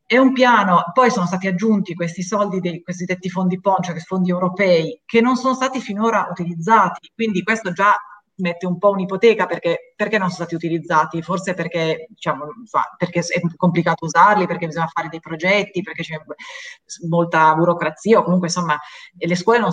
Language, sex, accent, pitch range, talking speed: Italian, female, native, 170-220 Hz, 175 wpm